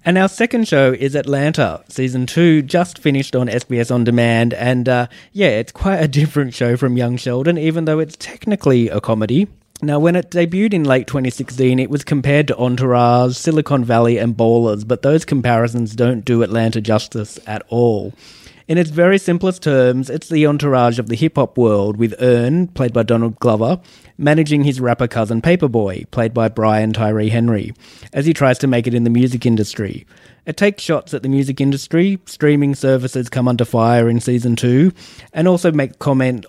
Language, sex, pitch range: English, male, 115-145 Hz